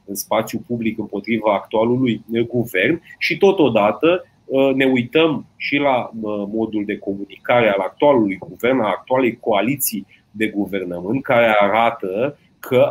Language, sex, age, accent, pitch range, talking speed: Romanian, male, 30-49, native, 105-145 Hz, 120 wpm